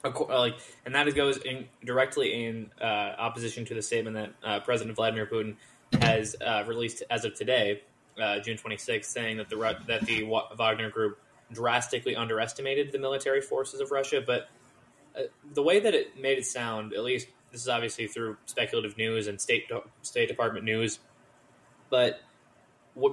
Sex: male